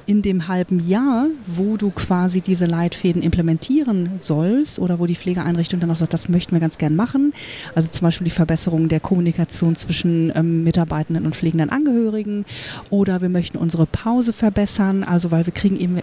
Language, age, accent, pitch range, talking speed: German, 30-49, German, 170-225 Hz, 170 wpm